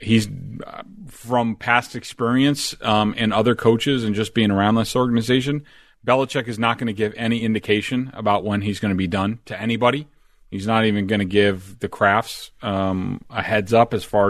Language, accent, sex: English, American, male